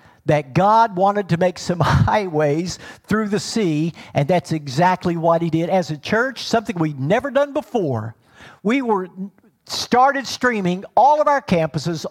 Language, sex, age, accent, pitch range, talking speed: English, male, 50-69, American, 170-235 Hz, 160 wpm